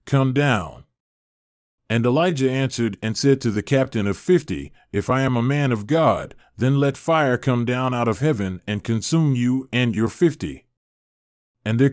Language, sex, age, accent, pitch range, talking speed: English, male, 30-49, American, 110-140 Hz, 175 wpm